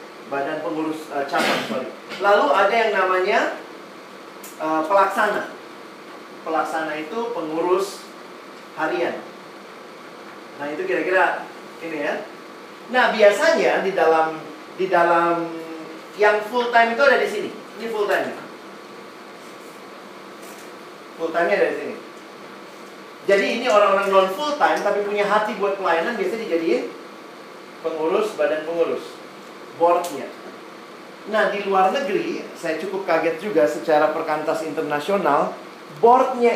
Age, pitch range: 40-59, 160-210 Hz